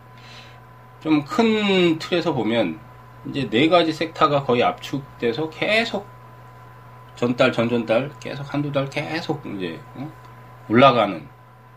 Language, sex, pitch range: Korean, male, 120-140 Hz